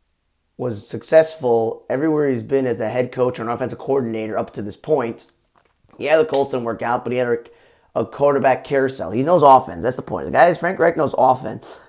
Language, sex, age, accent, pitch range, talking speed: English, male, 30-49, American, 120-150 Hz, 205 wpm